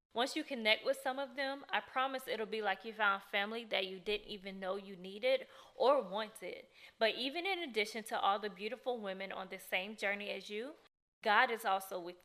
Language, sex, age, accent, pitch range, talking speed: English, female, 20-39, American, 195-250 Hz, 210 wpm